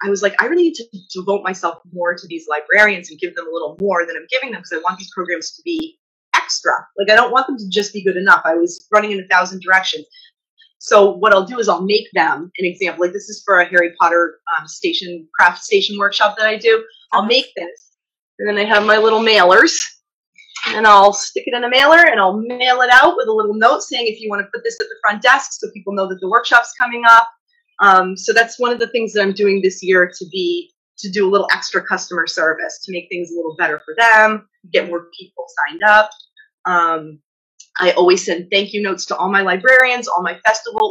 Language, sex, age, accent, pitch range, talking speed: English, female, 30-49, American, 180-230 Hz, 245 wpm